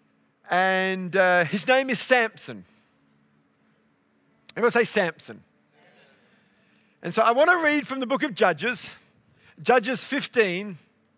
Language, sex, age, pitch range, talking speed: English, male, 50-69, 185-245 Hz, 120 wpm